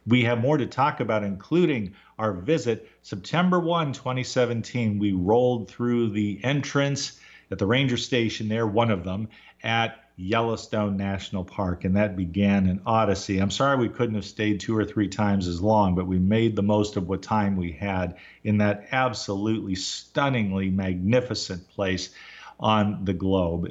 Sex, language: male, English